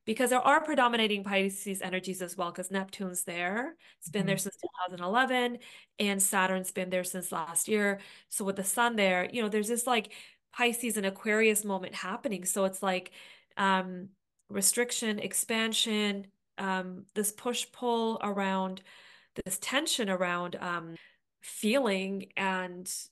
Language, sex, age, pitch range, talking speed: English, female, 30-49, 190-220 Hz, 140 wpm